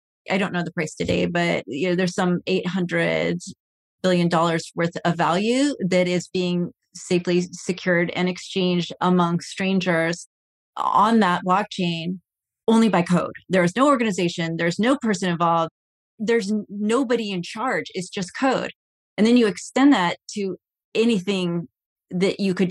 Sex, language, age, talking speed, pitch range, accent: female, English, 30-49, 150 wpm, 170-200 Hz, American